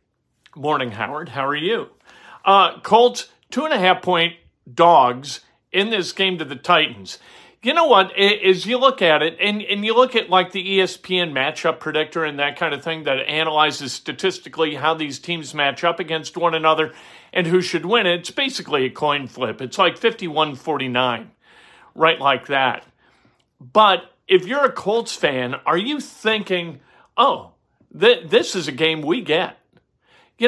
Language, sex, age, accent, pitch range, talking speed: English, male, 50-69, American, 155-200 Hz, 160 wpm